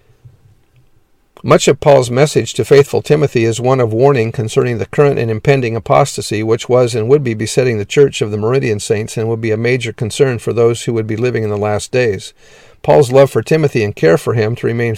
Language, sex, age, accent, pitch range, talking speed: English, male, 50-69, American, 110-135 Hz, 220 wpm